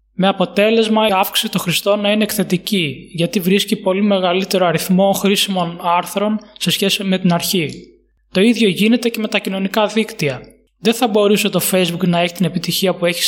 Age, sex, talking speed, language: 20-39, male, 180 wpm, Greek